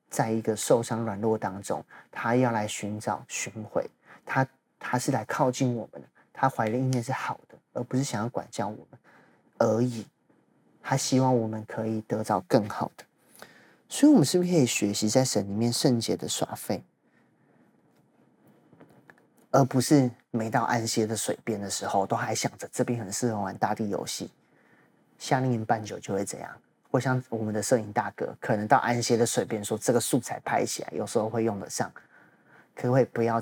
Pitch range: 110-130 Hz